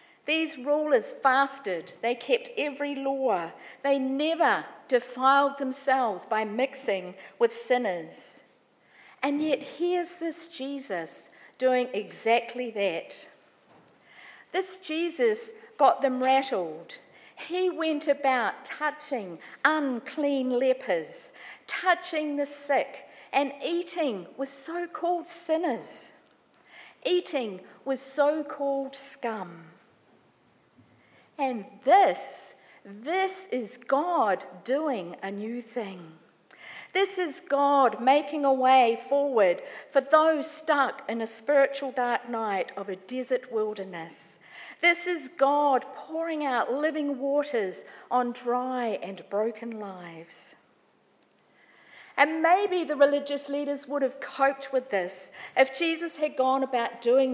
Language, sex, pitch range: Korean, female, 240-310 Hz